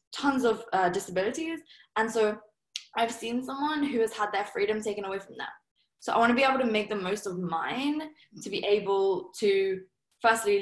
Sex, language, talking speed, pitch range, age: female, English, 190 wpm, 195-255 Hz, 10-29